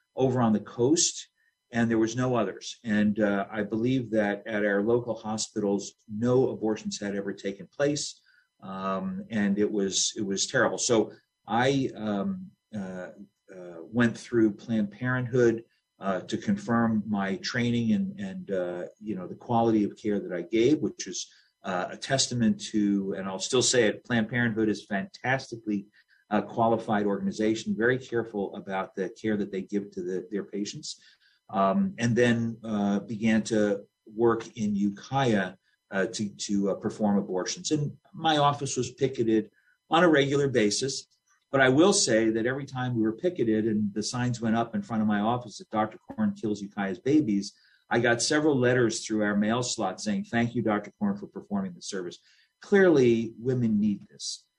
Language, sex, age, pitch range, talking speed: English, male, 50-69, 100-125 Hz, 175 wpm